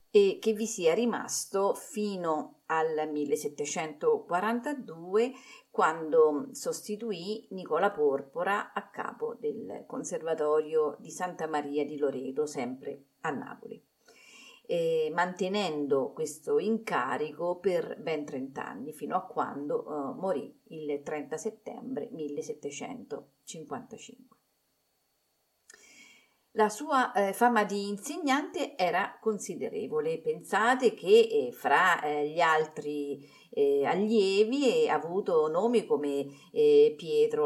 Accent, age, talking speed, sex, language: native, 40-59, 105 wpm, female, Italian